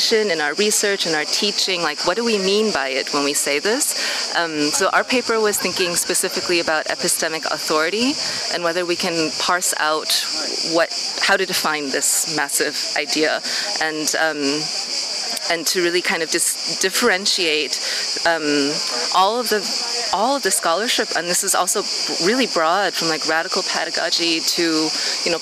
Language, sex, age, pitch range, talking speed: English, female, 30-49, 160-200 Hz, 170 wpm